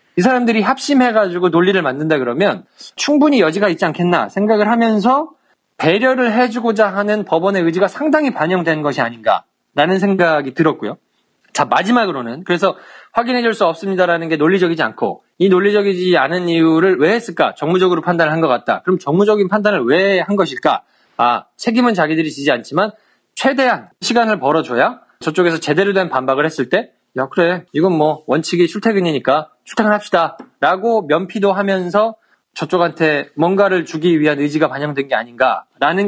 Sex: male